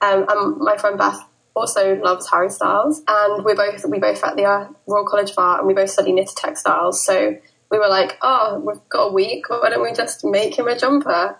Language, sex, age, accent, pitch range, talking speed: English, female, 10-29, British, 190-215 Hz, 225 wpm